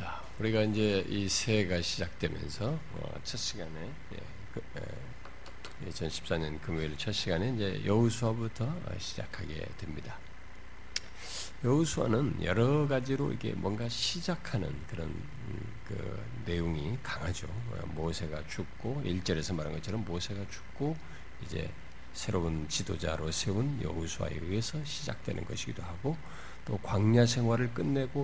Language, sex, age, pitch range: Korean, male, 50-69, 85-125 Hz